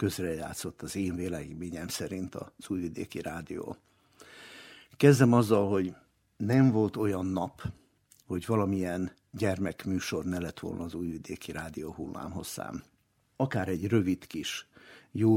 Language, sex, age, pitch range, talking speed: Hungarian, male, 60-79, 90-110 Hz, 120 wpm